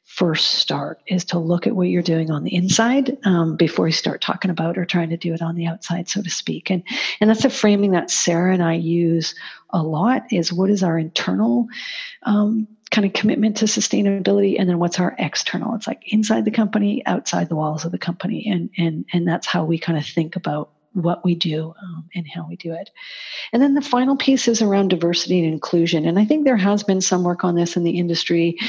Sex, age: female, 50-69